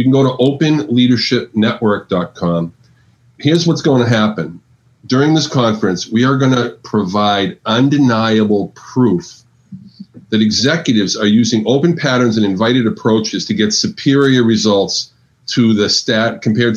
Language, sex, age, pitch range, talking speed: English, male, 40-59, 110-135 Hz, 130 wpm